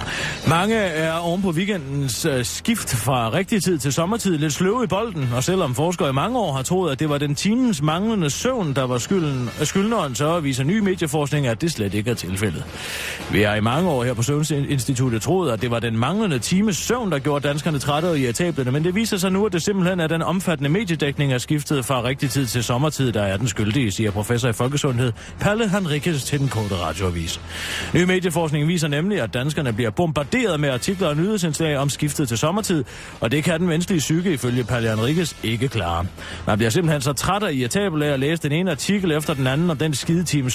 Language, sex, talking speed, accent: Danish, male, 215 wpm, native